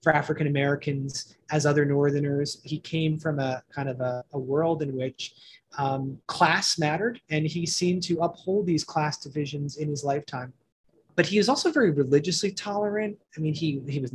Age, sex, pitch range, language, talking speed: 30-49, male, 140-170 Hz, English, 180 wpm